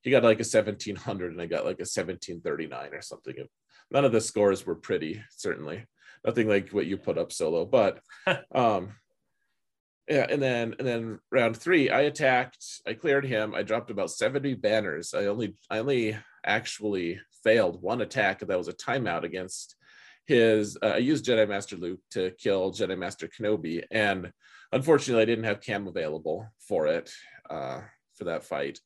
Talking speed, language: 185 wpm, English